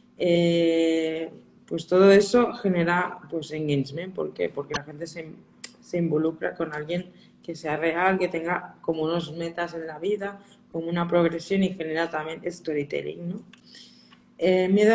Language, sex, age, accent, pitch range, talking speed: Spanish, female, 20-39, Spanish, 160-190 Hz, 155 wpm